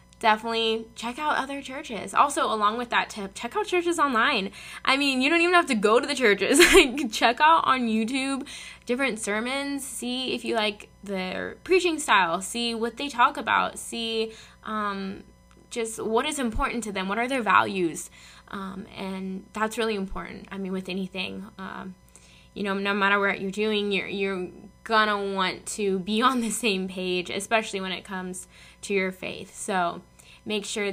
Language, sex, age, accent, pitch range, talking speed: English, female, 10-29, American, 195-245 Hz, 180 wpm